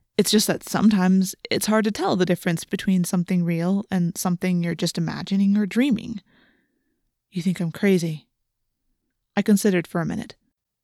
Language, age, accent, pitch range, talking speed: English, 20-39, American, 180-215 Hz, 160 wpm